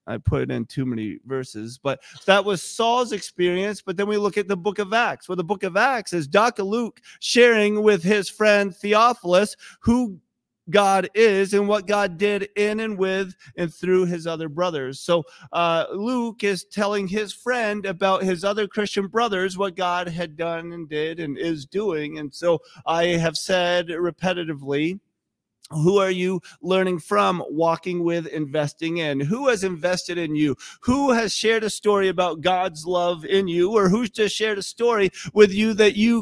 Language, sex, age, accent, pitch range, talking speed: English, male, 30-49, American, 170-210 Hz, 180 wpm